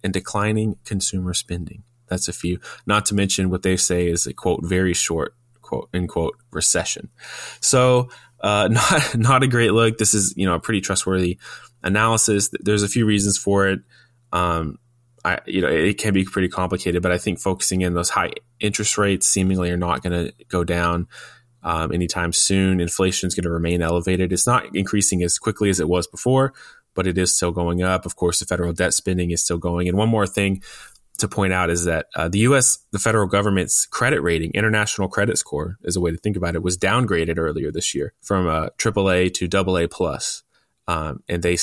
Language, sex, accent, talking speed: English, male, American, 205 wpm